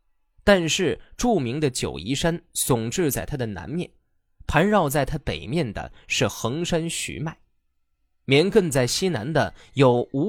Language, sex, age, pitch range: Chinese, male, 20-39, 120-175 Hz